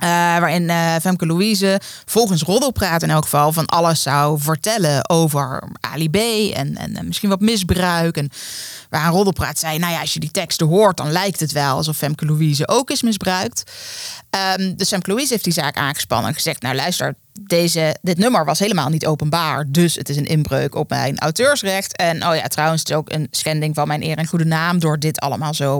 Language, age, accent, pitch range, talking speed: Dutch, 20-39, Dutch, 155-180 Hz, 205 wpm